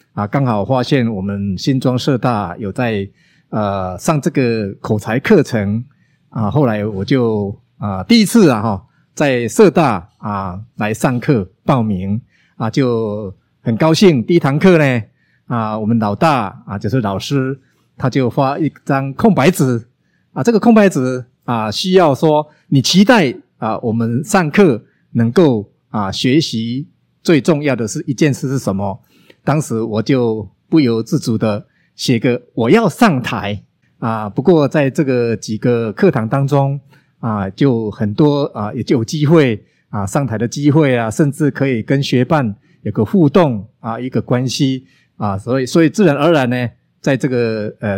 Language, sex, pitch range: Chinese, male, 110-150 Hz